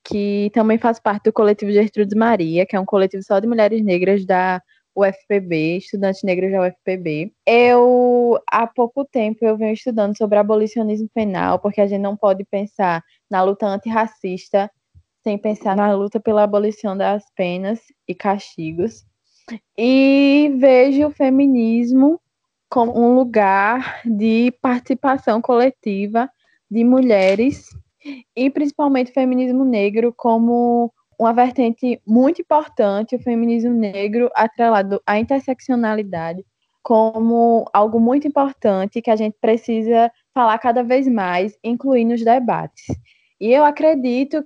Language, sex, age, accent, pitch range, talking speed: Portuguese, female, 20-39, Brazilian, 205-250 Hz, 130 wpm